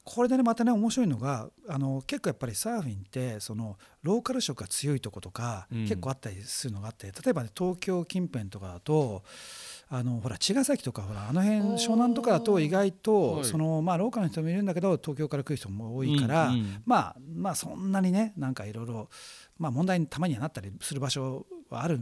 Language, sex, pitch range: Japanese, male, 105-175 Hz